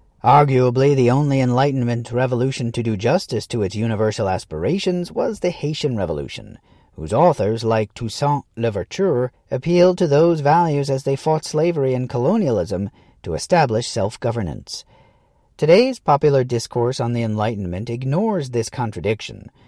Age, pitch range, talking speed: 40-59, 115-155 Hz, 130 wpm